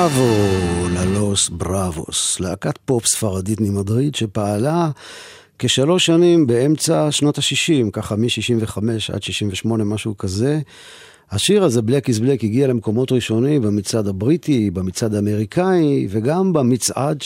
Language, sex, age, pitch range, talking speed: Hebrew, male, 50-69, 105-140 Hz, 115 wpm